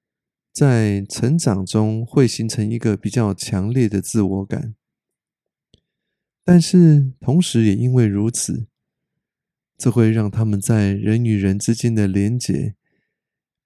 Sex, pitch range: male, 105-130 Hz